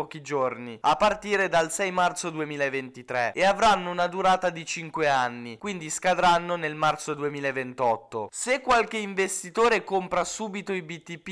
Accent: native